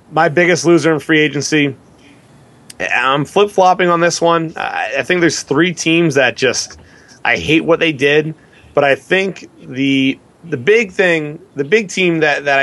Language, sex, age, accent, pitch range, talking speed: English, male, 30-49, American, 125-155 Hz, 170 wpm